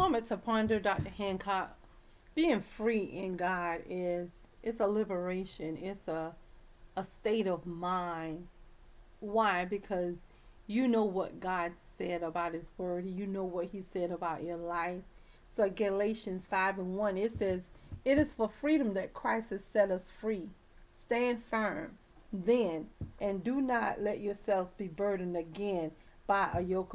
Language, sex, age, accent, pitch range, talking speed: English, female, 40-59, American, 185-220 Hz, 150 wpm